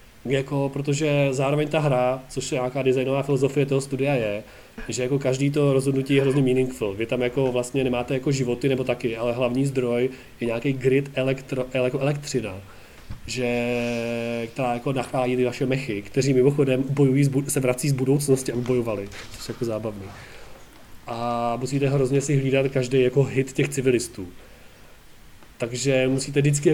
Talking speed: 155 wpm